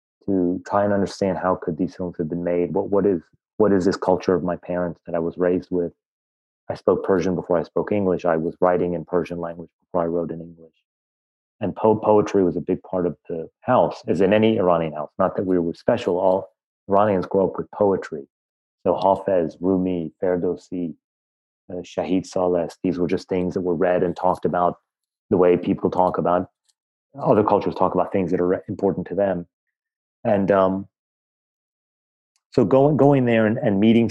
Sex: male